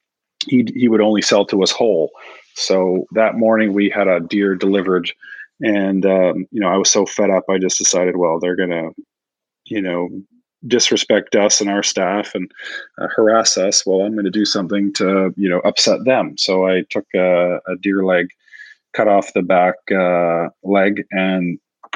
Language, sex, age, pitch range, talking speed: English, male, 30-49, 95-105 Hz, 185 wpm